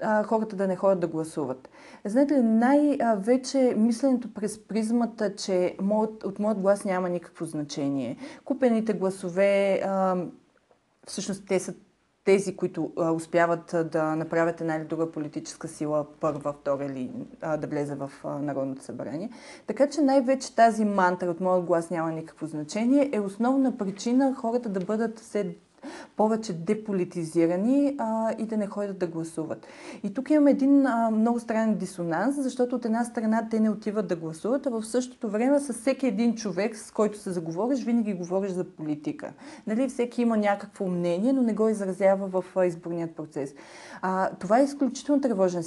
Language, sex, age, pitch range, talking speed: Bulgarian, female, 30-49, 175-235 Hz, 160 wpm